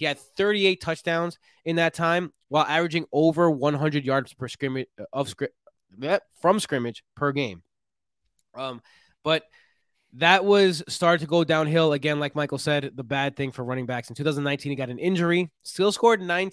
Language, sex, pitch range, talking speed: English, male, 130-170 Hz, 170 wpm